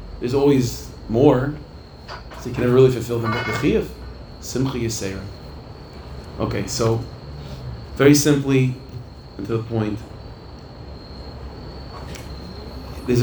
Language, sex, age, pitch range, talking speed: English, male, 40-59, 110-140 Hz, 95 wpm